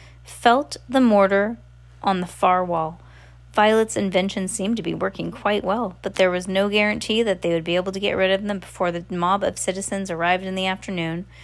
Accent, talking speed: American, 205 wpm